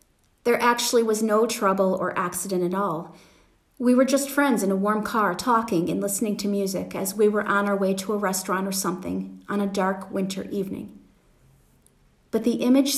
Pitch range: 195-240 Hz